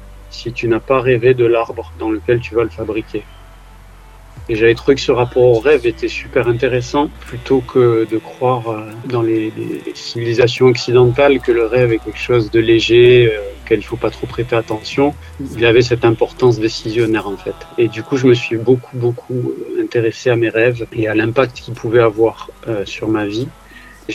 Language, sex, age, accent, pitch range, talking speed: French, male, 40-59, French, 110-130 Hz, 195 wpm